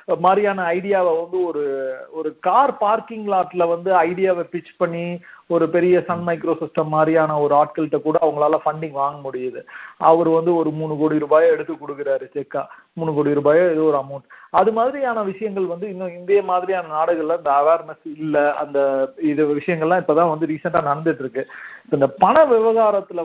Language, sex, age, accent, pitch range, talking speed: Tamil, male, 50-69, native, 155-195 Hz, 155 wpm